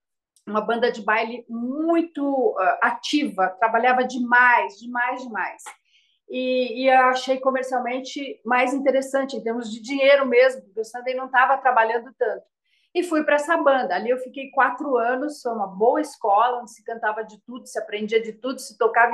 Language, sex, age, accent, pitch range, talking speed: Portuguese, female, 40-59, Brazilian, 225-275 Hz, 170 wpm